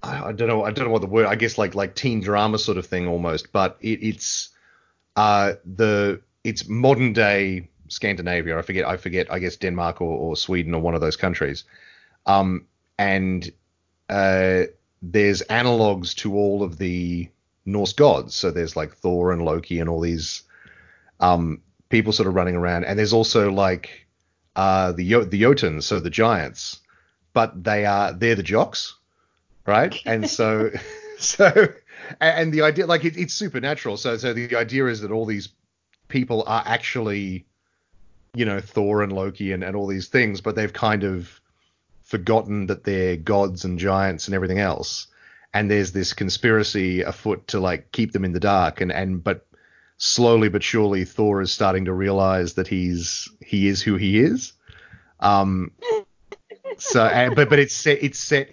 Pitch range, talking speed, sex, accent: 90-115 Hz, 175 wpm, male, Australian